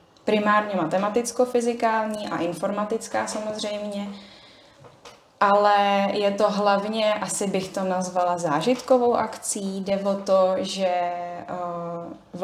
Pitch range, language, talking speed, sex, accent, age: 175-200 Hz, Czech, 95 wpm, female, native, 10-29